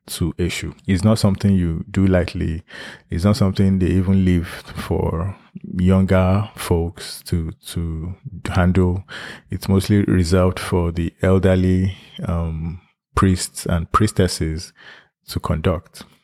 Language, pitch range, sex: English, 90-100 Hz, male